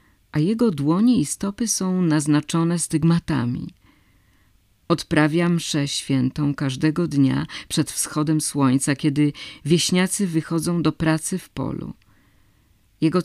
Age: 50-69